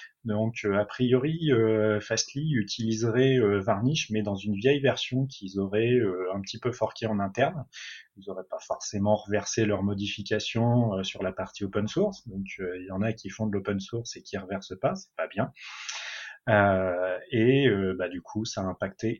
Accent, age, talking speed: French, 30-49, 200 wpm